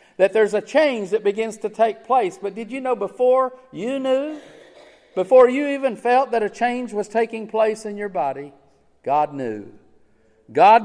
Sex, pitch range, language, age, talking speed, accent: male, 175-250 Hz, English, 50-69, 175 wpm, American